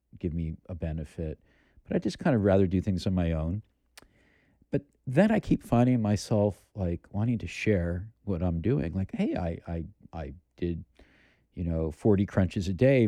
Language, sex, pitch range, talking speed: English, male, 85-105 Hz, 185 wpm